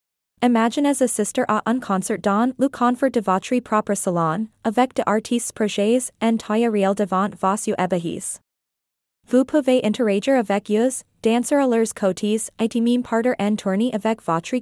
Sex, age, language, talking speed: female, 20-39, English, 160 wpm